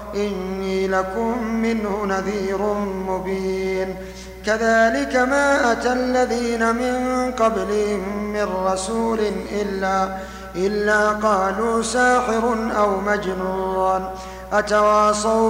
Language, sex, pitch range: Arabic, male, 190-225 Hz